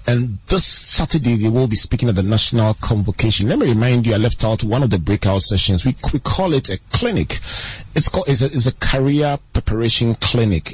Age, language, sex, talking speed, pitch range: 30-49, English, male, 210 wpm, 95-125 Hz